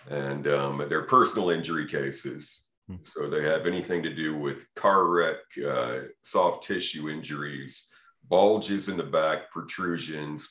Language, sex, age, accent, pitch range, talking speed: English, male, 40-59, American, 75-100 Hz, 135 wpm